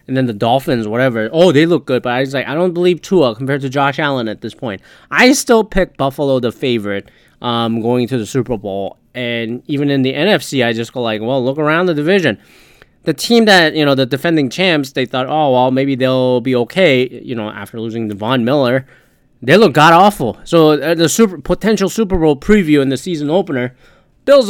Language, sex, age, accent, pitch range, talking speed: English, male, 20-39, American, 125-175 Hz, 215 wpm